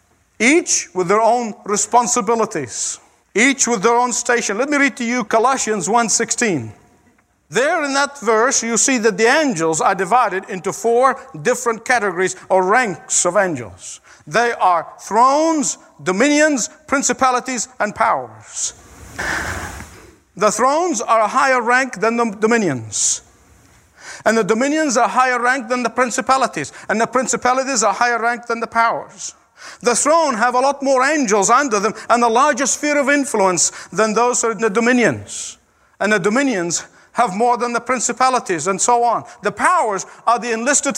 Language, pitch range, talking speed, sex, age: English, 220-270 Hz, 155 wpm, male, 50-69